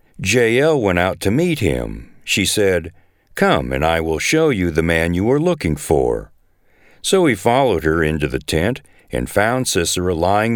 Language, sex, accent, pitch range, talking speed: English, male, American, 85-140 Hz, 175 wpm